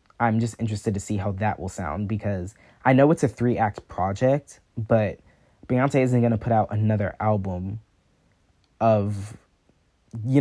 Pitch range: 100-120 Hz